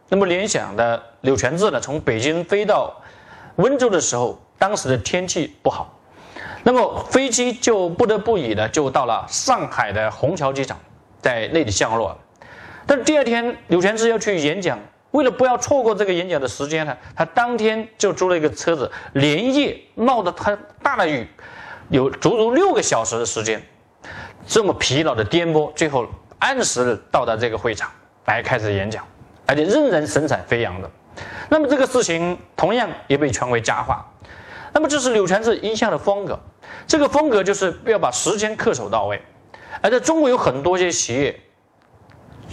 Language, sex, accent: Chinese, male, native